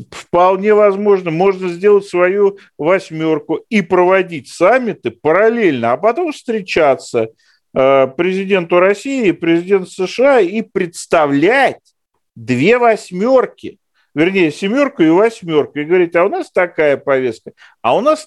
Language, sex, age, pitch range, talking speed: Russian, male, 50-69, 175-245 Hz, 120 wpm